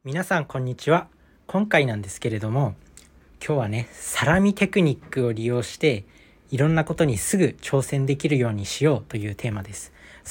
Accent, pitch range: native, 105-160 Hz